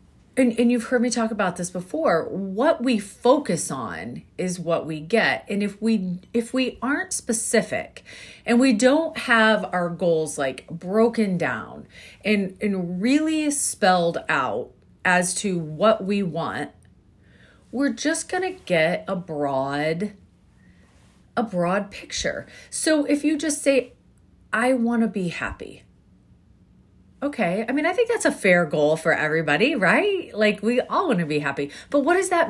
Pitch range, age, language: 170-255 Hz, 30-49, English